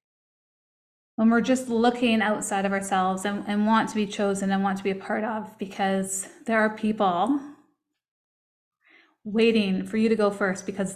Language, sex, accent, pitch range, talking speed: English, female, American, 195-230 Hz, 170 wpm